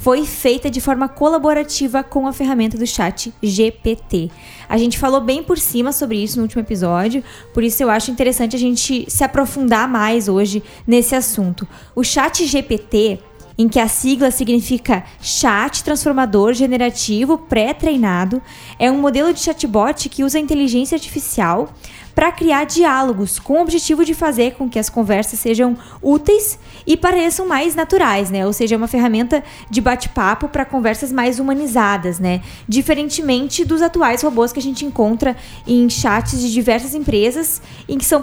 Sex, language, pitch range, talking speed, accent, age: female, Portuguese, 230-295 Hz, 160 wpm, Brazilian, 20-39